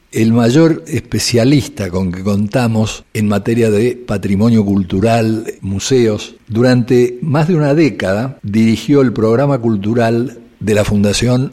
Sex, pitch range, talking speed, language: male, 110-140 Hz, 125 wpm, Spanish